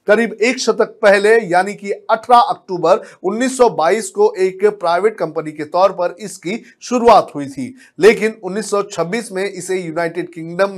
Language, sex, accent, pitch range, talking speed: Hindi, male, native, 175-230 Hz, 145 wpm